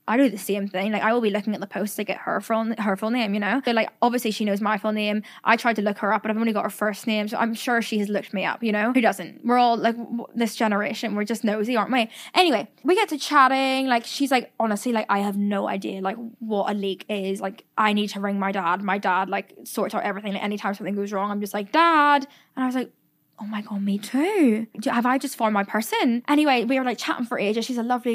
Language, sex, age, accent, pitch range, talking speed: English, female, 10-29, British, 210-255 Hz, 280 wpm